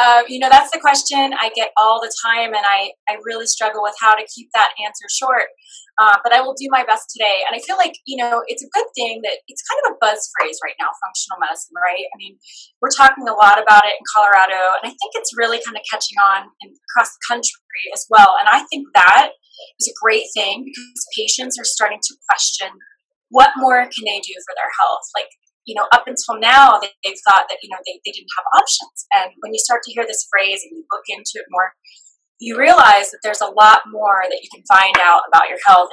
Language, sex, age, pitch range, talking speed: English, female, 20-39, 200-275 Hz, 240 wpm